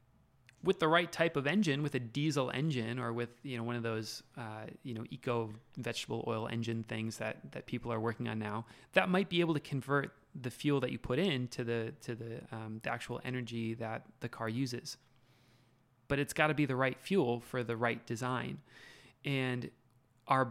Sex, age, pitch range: male, 30-49, 115-135 Hz